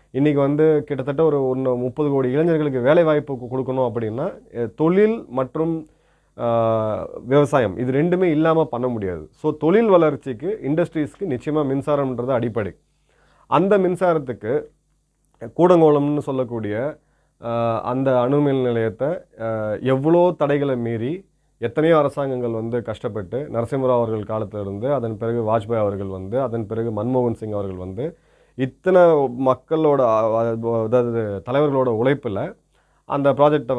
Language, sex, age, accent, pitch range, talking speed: Tamil, male, 30-49, native, 115-150 Hz, 110 wpm